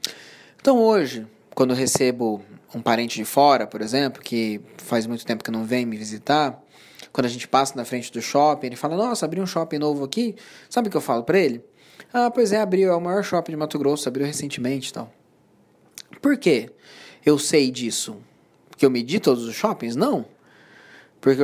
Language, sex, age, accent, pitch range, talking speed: Portuguese, male, 20-39, Brazilian, 125-160 Hz, 200 wpm